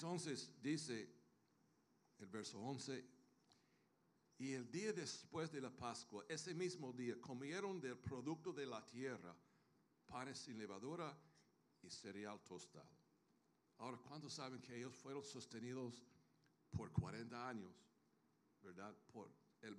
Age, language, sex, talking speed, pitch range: 60-79, Spanish, male, 120 wpm, 120-155 Hz